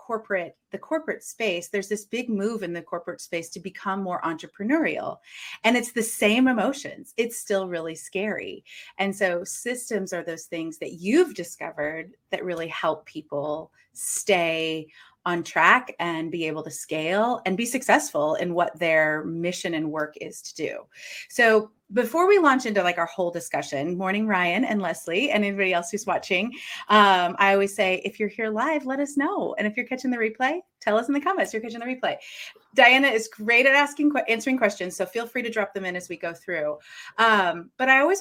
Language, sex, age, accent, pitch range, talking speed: English, female, 30-49, American, 170-235 Hz, 195 wpm